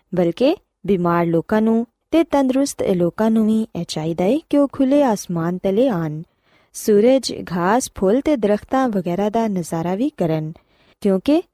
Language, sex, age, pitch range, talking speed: Punjabi, female, 20-39, 180-260 Hz, 145 wpm